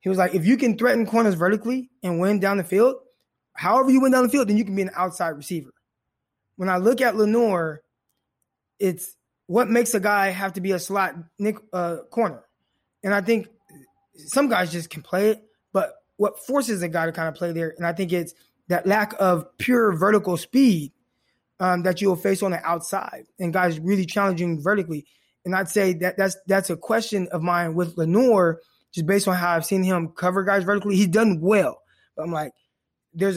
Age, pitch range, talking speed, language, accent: 20-39, 175-220 Hz, 205 wpm, English, American